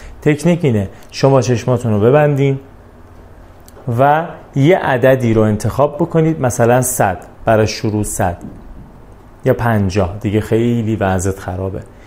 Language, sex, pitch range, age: Persian, male, 110-145 Hz, 30-49